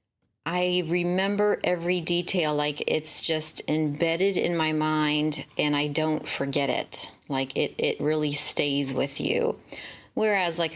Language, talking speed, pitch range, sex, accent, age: English, 140 wpm, 150-185 Hz, female, American, 30-49